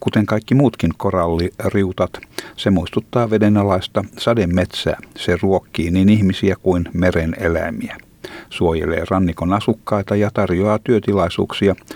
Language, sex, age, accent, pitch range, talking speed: Finnish, male, 60-79, native, 85-105 Hz, 105 wpm